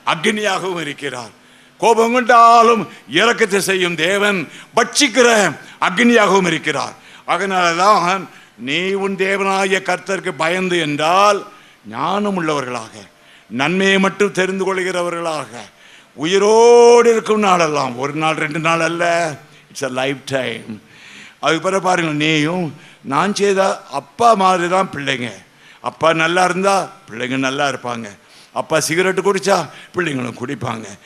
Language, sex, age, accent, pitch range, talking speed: Tamil, male, 60-79, native, 155-205 Hz, 105 wpm